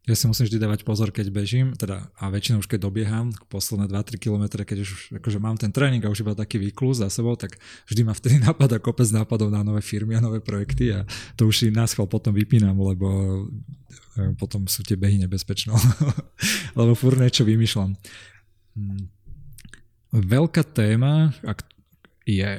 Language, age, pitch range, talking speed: Slovak, 20-39, 100-115 Hz, 175 wpm